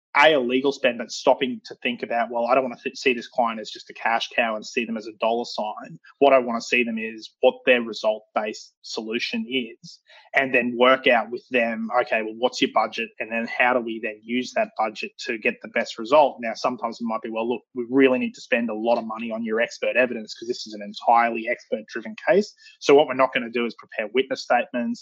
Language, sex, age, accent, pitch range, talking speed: English, male, 20-39, Australian, 115-130 Hz, 250 wpm